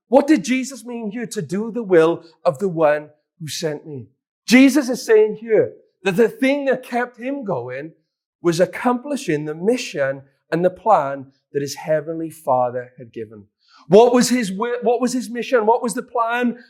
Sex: male